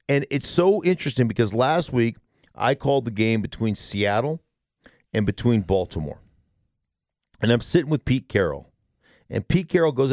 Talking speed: 155 wpm